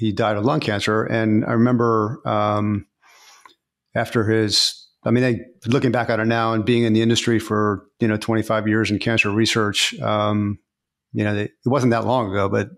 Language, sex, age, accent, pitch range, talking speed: English, male, 40-59, American, 105-120 Hz, 195 wpm